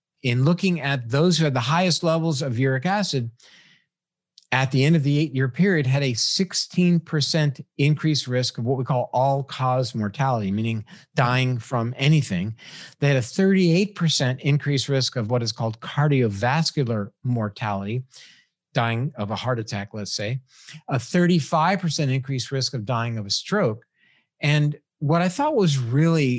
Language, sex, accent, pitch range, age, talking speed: English, male, American, 125-155 Hz, 50-69, 155 wpm